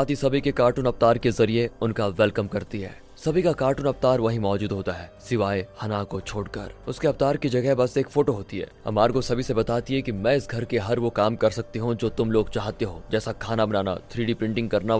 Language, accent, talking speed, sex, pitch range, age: Hindi, native, 230 wpm, male, 110-135 Hz, 20-39